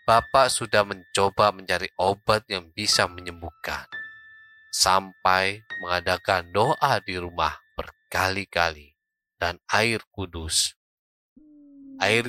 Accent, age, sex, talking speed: native, 20-39, male, 90 wpm